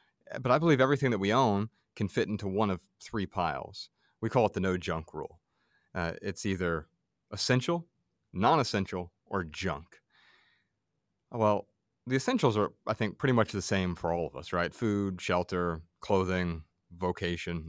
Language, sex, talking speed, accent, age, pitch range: English, male, 160 wpm, American, 30-49, 85-110 Hz